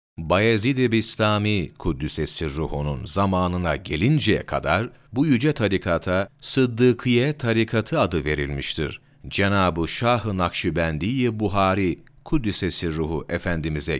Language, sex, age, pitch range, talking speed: Turkish, male, 40-59, 80-115 Hz, 85 wpm